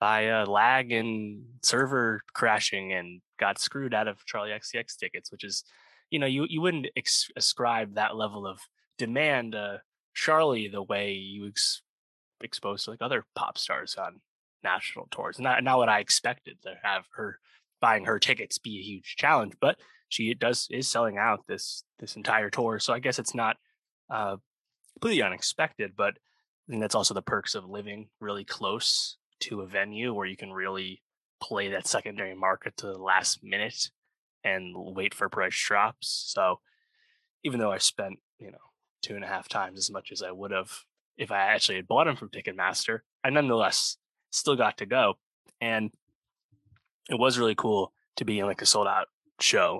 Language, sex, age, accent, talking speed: English, male, 20-39, American, 180 wpm